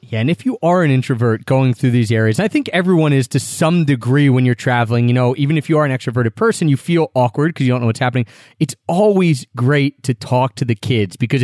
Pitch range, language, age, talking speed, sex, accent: 125-170 Hz, English, 30-49, 255 wpm, male, American